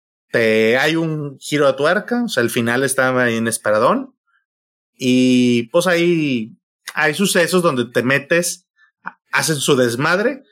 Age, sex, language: 30-49, male, Spanish